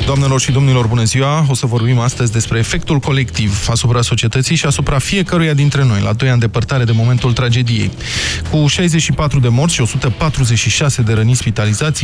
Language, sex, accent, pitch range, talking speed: Romanian, male, native, 115-145 Hz, 175 wpm